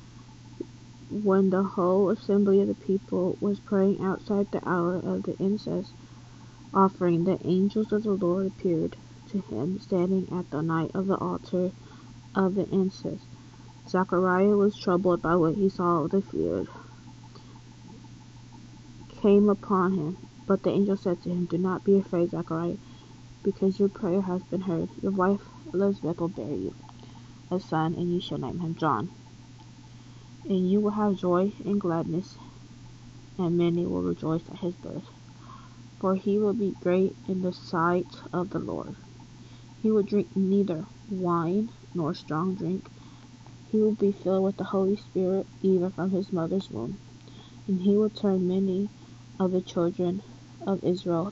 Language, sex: English, female